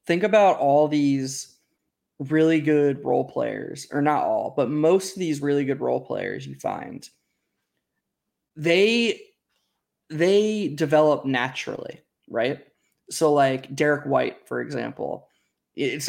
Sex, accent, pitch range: male, American, 135-160 Hz